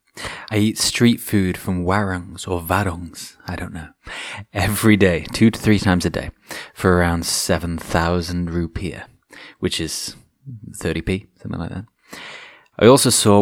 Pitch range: 90-105 Hz